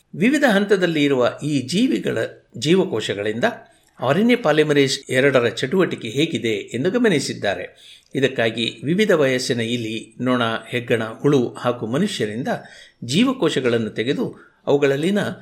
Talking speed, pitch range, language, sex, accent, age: 95 wpm, 125-175 Hz, Kannada, male, native, 60-79